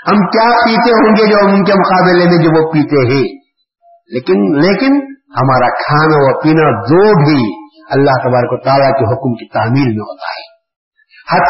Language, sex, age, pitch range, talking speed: Urdu, male, 50-69, 140-210 Hz, 170 wpm